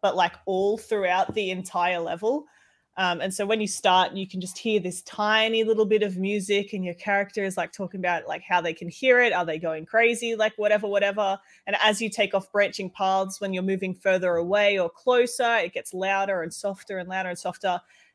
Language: English